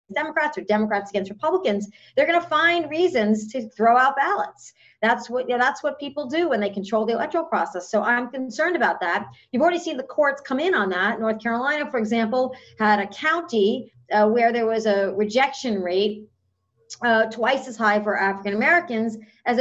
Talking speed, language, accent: 195 wpm, English, American